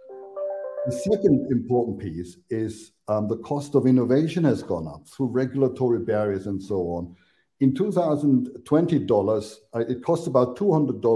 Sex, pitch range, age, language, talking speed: male, 115-160 Hz, 60-79, English, 140 wpm